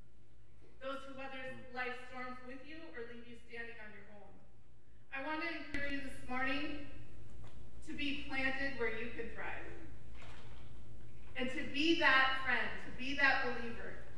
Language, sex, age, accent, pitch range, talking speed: English, female, 30-49, American, 235-295 Hz, 155 wpm